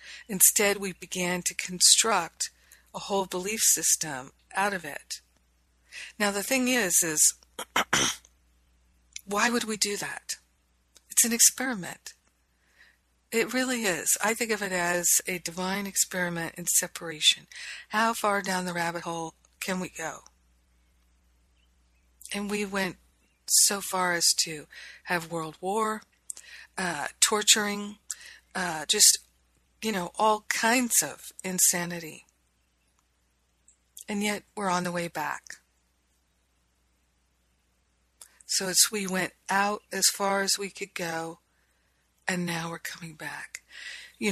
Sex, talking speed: female, 125 wpm